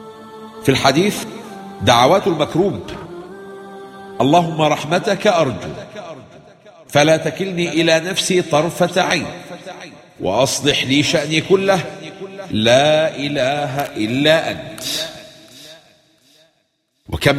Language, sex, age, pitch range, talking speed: English, male, 50-69, 130-185 Hz, 75 wpm